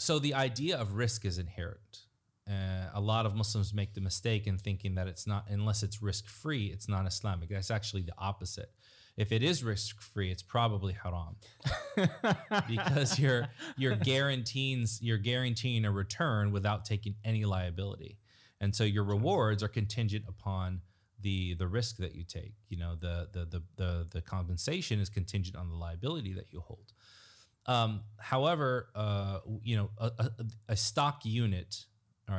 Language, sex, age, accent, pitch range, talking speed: English, male, 30-49, American, 95-110 Hz, 170 wpm